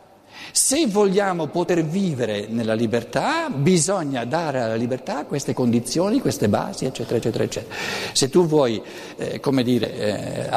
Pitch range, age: 120-205 Hz, 60-79